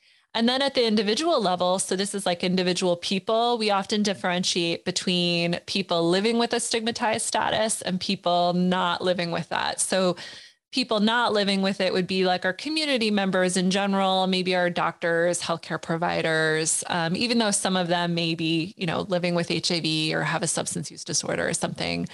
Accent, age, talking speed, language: American, 20-39, 185 wpm, English